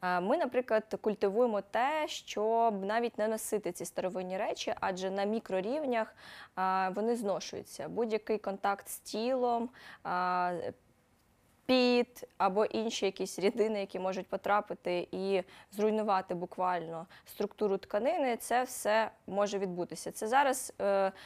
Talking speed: 110 wpm